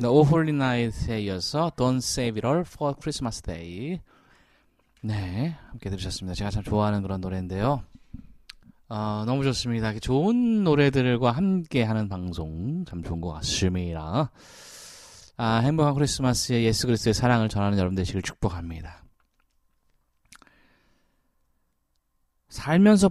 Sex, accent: male, native